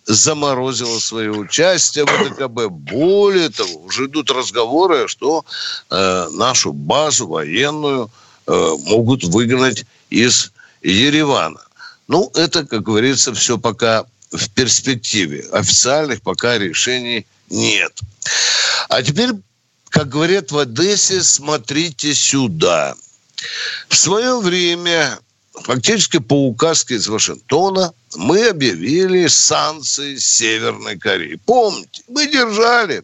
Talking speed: 100 wpm